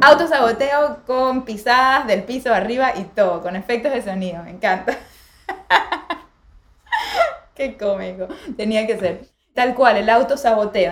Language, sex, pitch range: Spanish, female, 200-255 Hz